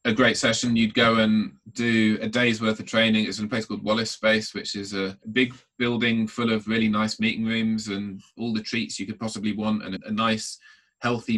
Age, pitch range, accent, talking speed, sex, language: 20-39, 95-115 Hz, British, 220 wpm, male, English